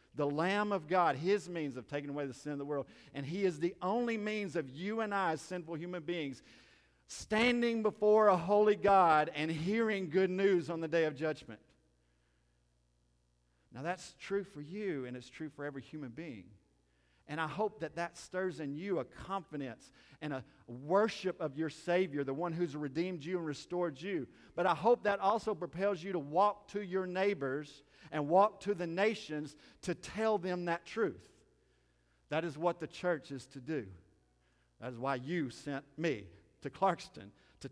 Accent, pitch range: American, 110-180 Hz